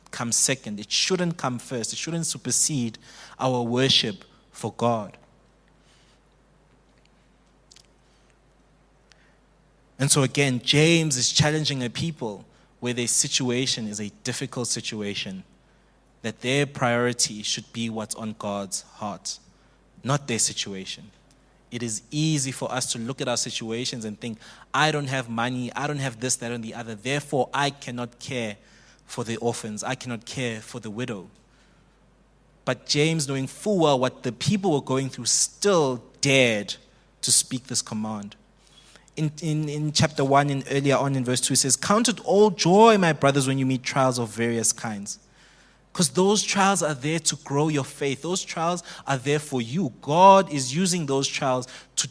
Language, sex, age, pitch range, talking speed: English, male, 20-39, 115-145 Hz, 160 wpm